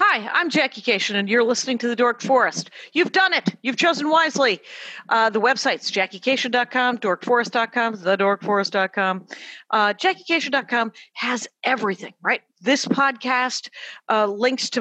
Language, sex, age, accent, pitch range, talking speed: English, female, 50-69, American, 200-250 Hz, 130 wpm